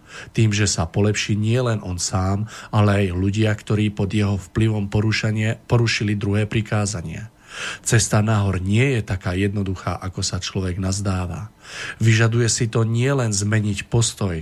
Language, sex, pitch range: Slovak, male, 95-110 Hz